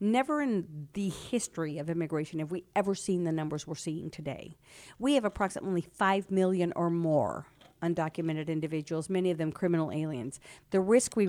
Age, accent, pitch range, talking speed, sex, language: 50-69, American, 160-195 Hz, 170 wpm, female, English